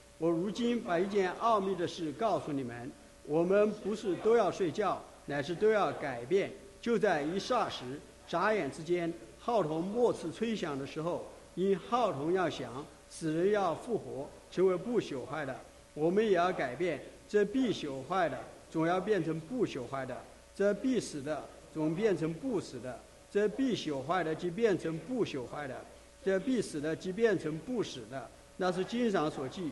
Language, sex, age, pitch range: English, male, 50-69, 160-210 Hz